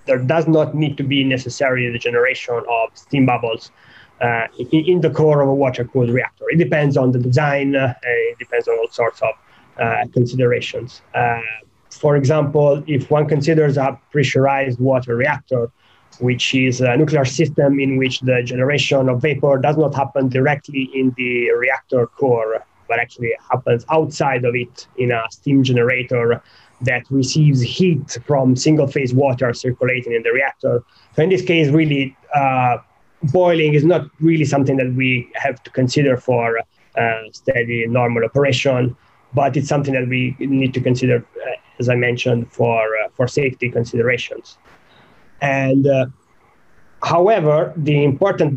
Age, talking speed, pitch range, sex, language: 20-39, 155 wpm, 125-150 Hz, male, English